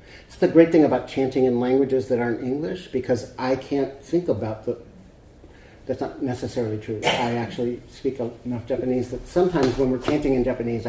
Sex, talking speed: male, 180 wpm